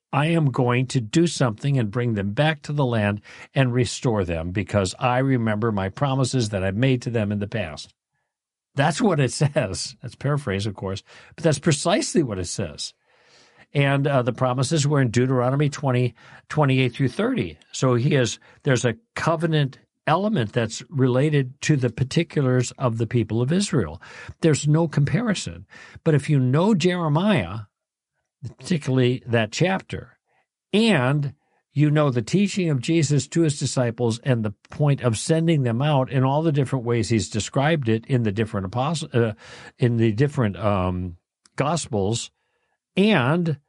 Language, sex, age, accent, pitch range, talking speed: English, male, 50-69, American, 115-150 Hz, 160 wpm